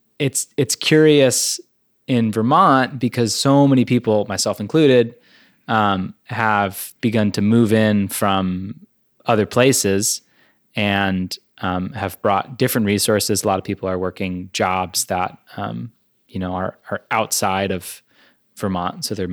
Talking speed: 135 wpm